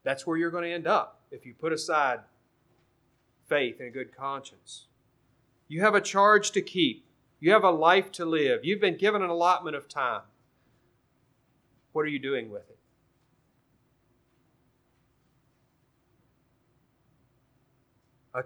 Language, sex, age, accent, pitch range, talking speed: English, male, 30-49, American, 125-165 Hz, 135 wpm